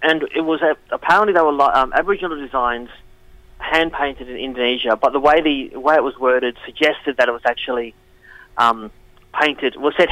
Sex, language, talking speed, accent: male, English, 195 wpm, Australian